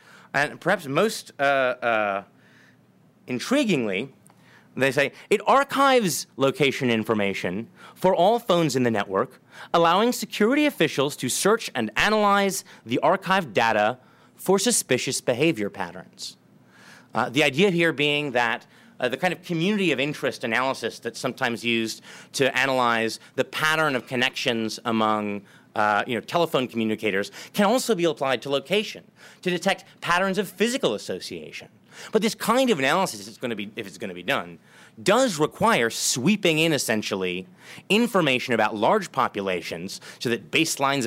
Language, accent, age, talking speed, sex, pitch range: English, American, 30-49, 140 wpm, male, 115-185 Hz